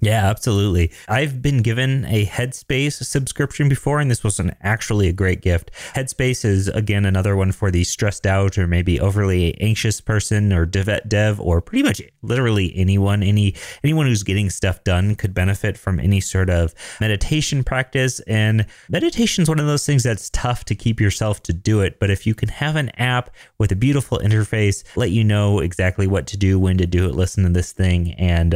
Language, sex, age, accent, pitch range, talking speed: English, male, 30-49, American, 95-125 Hz, 200 wpm